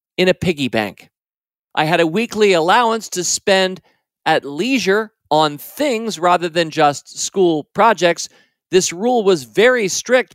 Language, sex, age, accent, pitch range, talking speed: English, male, 40-59, American, 155-200 Hz, 145 wpm